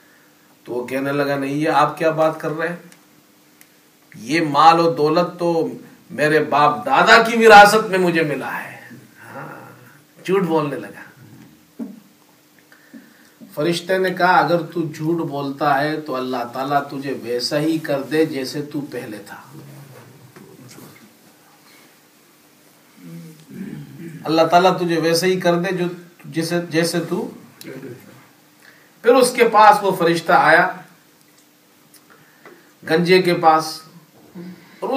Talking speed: 120 wpm